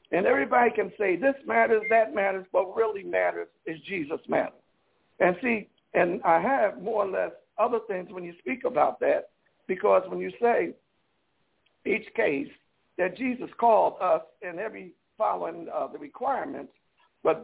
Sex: male